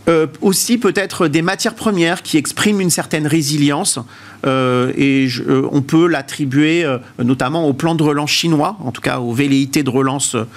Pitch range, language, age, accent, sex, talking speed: 125-165 Hz, French, 50-69, French, male, 180 wpm